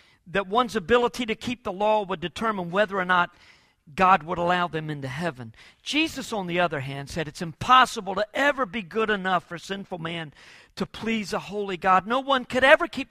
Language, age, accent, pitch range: English, 50-69, American, 180-265 Hz